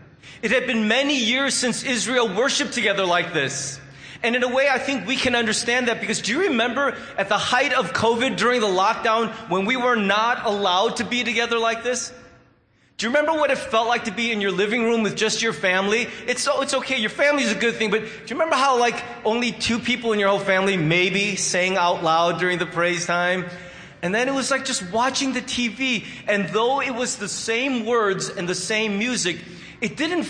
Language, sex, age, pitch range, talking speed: English, male, 30-49, 195-250 Hz, 220 wpm